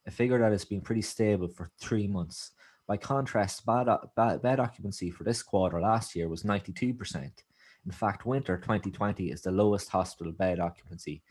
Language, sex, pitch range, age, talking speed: English, male, 90-105 Hz, 20-39, 170 wpm